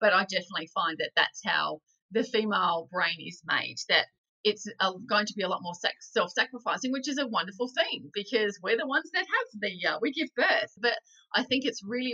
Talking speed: 210 wpm